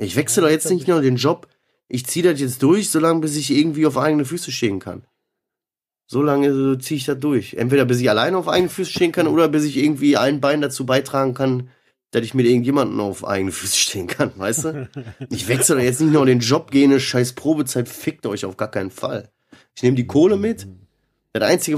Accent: German